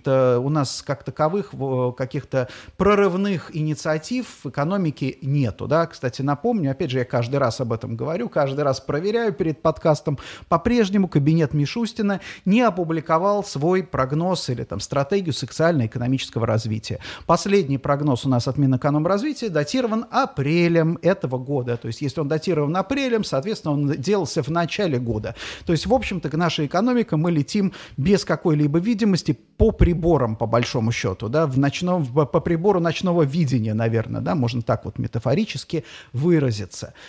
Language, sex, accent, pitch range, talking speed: Russian, male, native, 130-185 Hz, 145 wpm